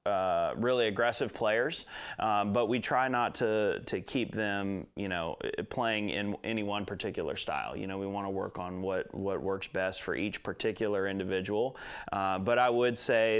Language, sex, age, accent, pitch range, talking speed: English, male, 30-49, American, 95-115 Hz, 185 wpm